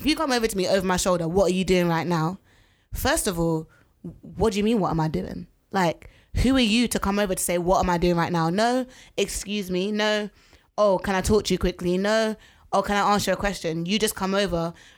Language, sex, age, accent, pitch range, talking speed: English, female, 20-39, British, 175-215 Hz, 250 wpm